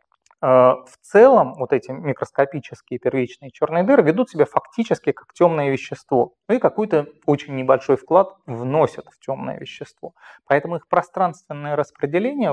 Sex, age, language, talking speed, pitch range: male, 30-49, Russian, 130 wpm, 125-175 Hz